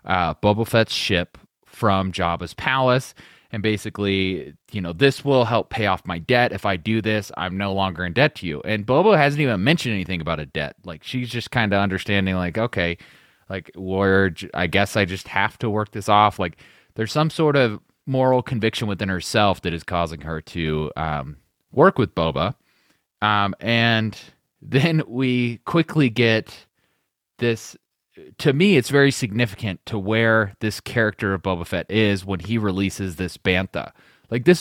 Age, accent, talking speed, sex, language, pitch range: 30-49, American, 175 wpm, male, English, 95-125 Hz